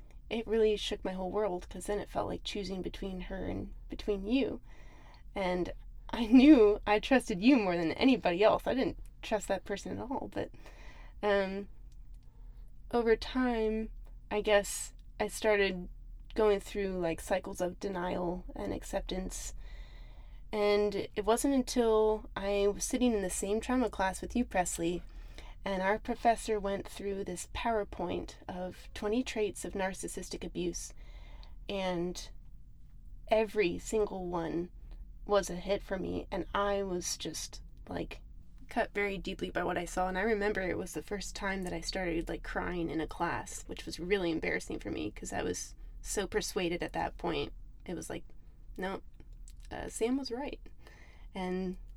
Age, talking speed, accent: 20-39, 160 wpm, American